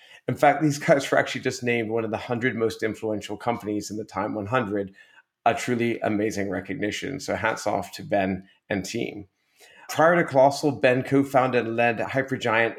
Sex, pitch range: male, 110-140 Hz